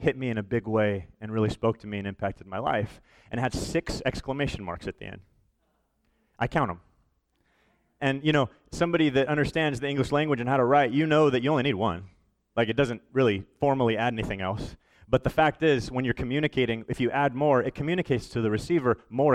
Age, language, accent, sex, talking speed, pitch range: 30-49, English, American, male, 220 wpm, 120-155 Hz